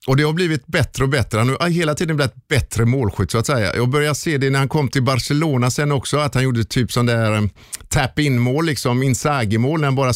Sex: male